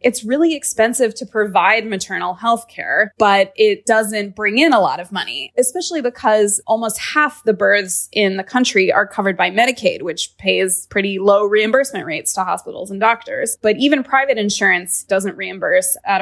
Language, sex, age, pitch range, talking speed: English, female, 20-39, 195-235 Hz, 175 wpm